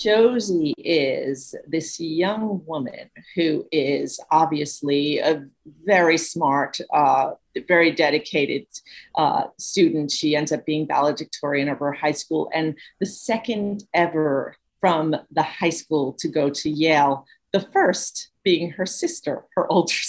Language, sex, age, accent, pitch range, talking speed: English, female, 40-59, American, 155-215 Hz, 130 wpm